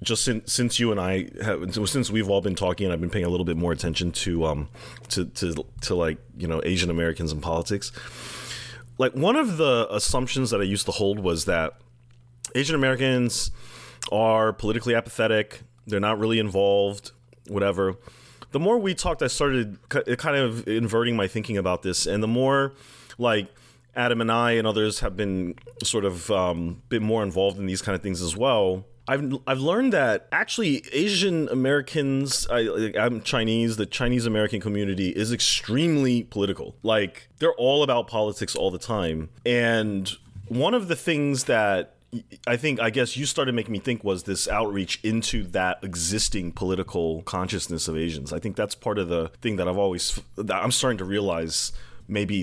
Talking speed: 175 wpm